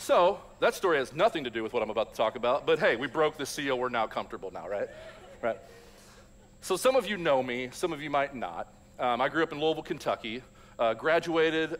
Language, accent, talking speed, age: English, American, 235 wpm, 40-59